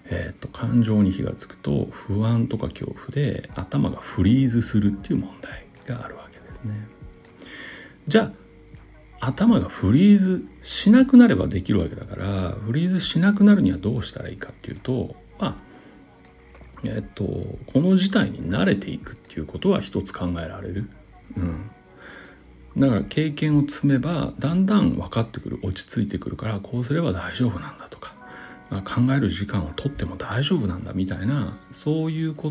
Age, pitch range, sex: 60-79, 95-145 Hz, male